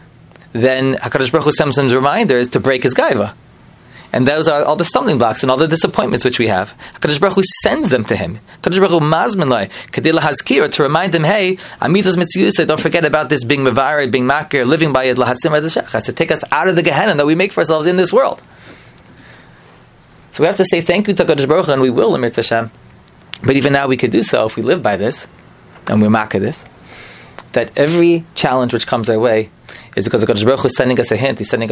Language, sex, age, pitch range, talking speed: English, male, 20-39, 115-160 Hz, 235 wpm